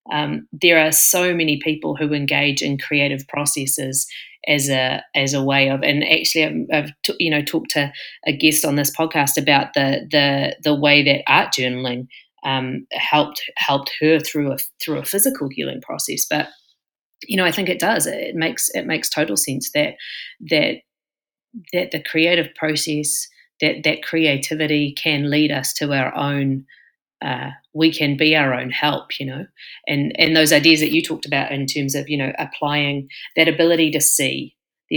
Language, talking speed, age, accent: English, 180 wpm, 30-49, Australian